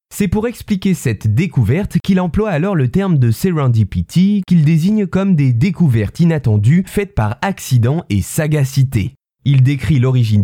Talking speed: 150 wpm